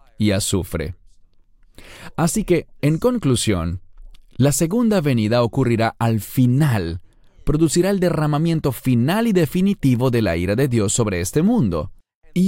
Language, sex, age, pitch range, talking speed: English, male, 40-59, 100-145 Hz, 125 wpm